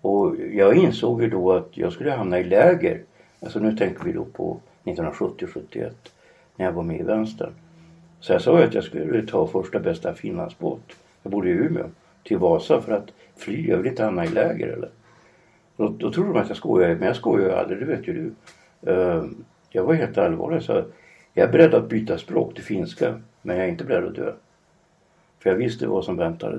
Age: 60-79